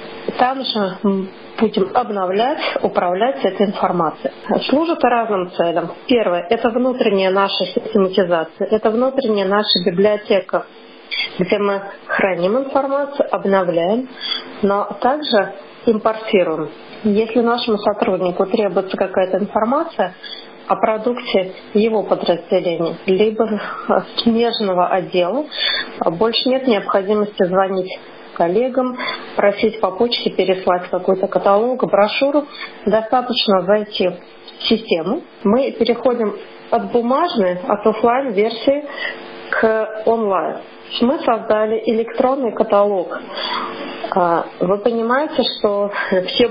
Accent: native